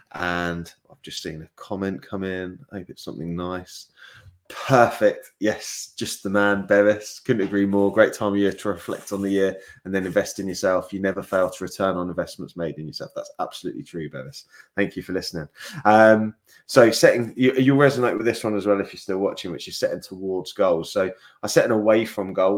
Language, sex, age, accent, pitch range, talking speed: English, male, 20-39, British, 90-115 Hz, 215 wpm